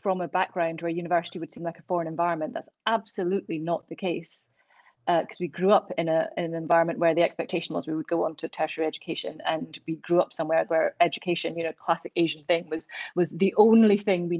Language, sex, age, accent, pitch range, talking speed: English, female, 30-49, British, 165-195 Hz, 225 wpm